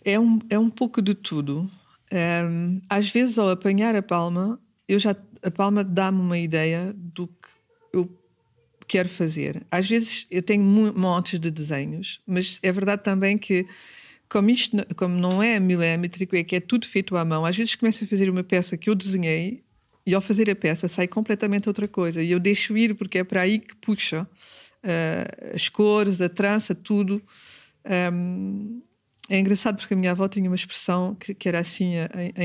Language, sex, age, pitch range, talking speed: Portuguese, female, 50-69, 180-210 Hz, 190 wpm